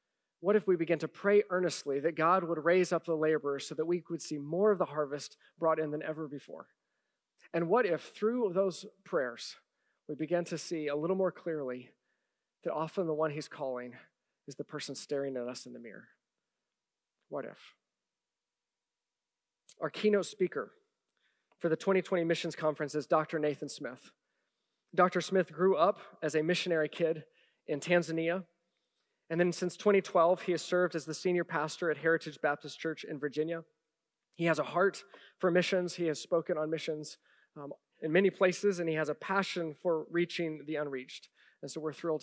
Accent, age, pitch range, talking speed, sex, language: American, 40-59, 155-185 Hz, 180 wpm, male, English